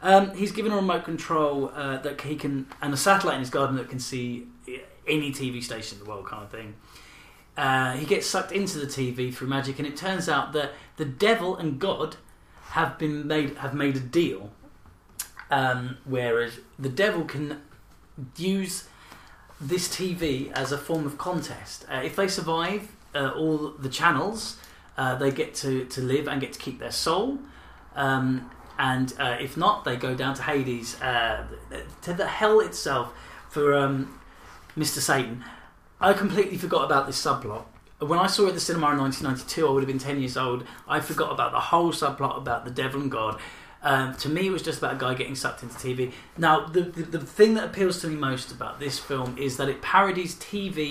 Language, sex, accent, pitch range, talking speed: English, male, British, 130-165 Hz, 200 wpm